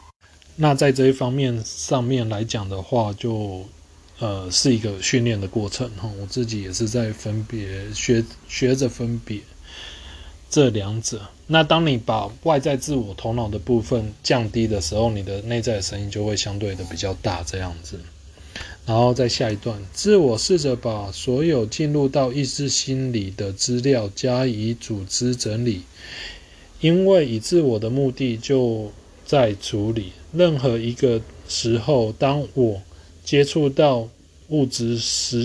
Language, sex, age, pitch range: Chinese, male, 20-39, 100-130 Hz